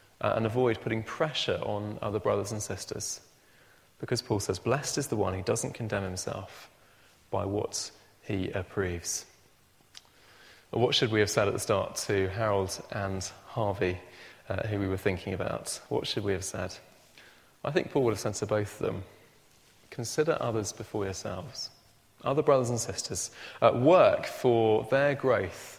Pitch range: 95-120 Hz